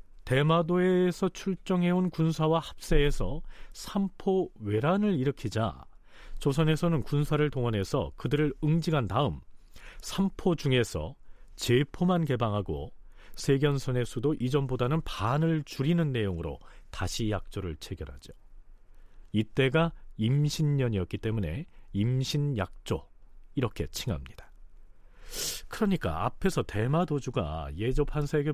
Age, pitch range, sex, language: 40-59, 100-150 Hz, male, Korean